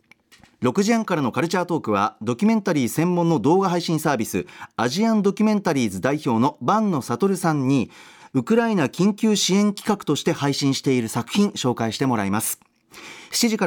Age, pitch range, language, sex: 40-59, 140-220 Hz, Japanese, male